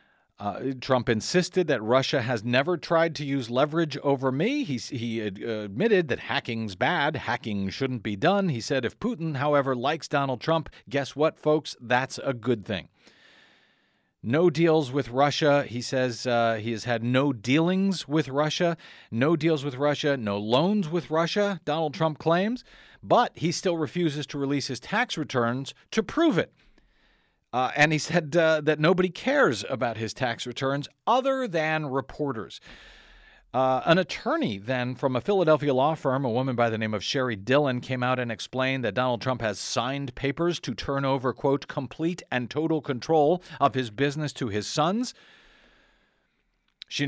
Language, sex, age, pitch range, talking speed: English, male, 40-59, 125-160 Hz, 170 wpm